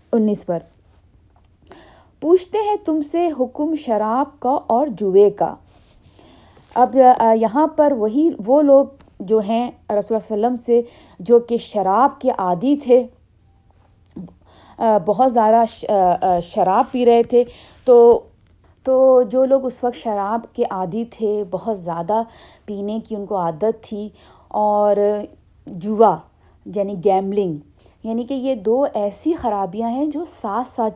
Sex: female